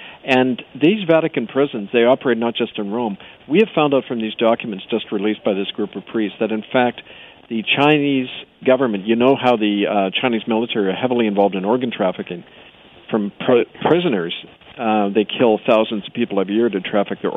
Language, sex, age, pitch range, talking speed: English, male, 50-69, 105-125 Hz, 195 wpm